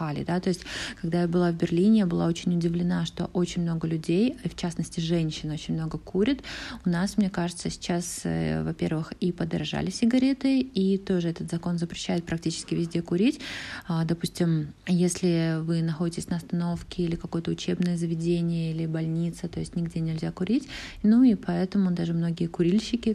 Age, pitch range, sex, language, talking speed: 20-39, 170-195 Hz, female, Polish, 160 wpm